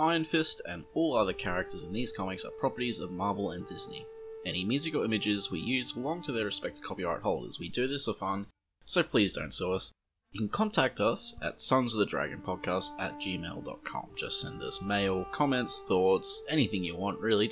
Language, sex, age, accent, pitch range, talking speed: English, male, 20-39, Australian, 100-170 Hz, 200 wpm